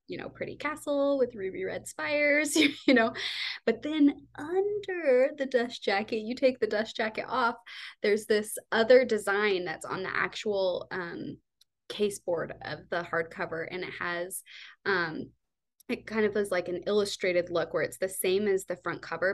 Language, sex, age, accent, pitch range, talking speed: English, female, 20-39, American, 195-280 Hz, 175 wpm